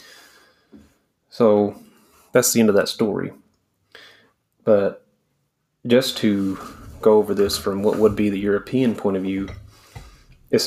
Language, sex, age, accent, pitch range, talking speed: English, male, 30-49, American, 100-110 Hz, 130 wpm